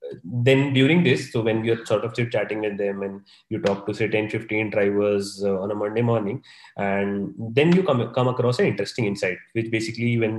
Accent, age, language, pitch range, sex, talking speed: Indian, 20-39, English, 115-140 Hz, male, 210 wpm